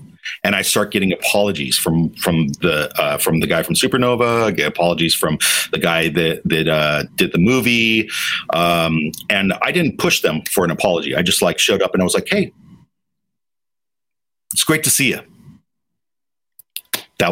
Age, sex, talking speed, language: 40-59, male, 175 wpm, English